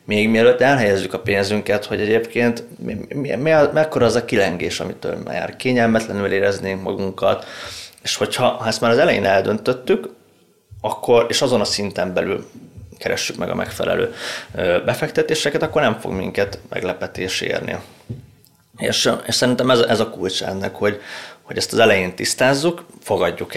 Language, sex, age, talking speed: Hungarian, male, 20-39, 145 wpm